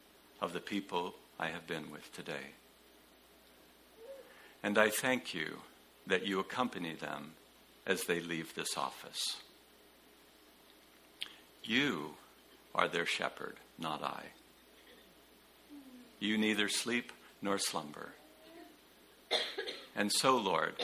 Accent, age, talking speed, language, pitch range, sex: American, 60-79, 100 wpm, English, 95-125 Hz, male